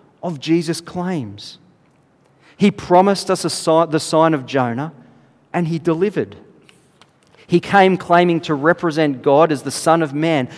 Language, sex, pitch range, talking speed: English, male, 135-175 Hz, 145 wpm